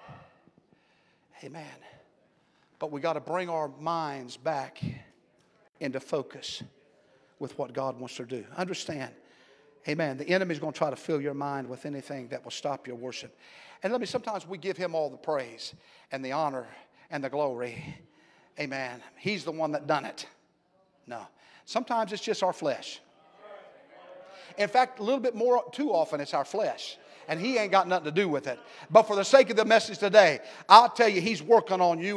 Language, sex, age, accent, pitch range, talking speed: English, male, 50-69, American, 155-235 Hz, 185 wpm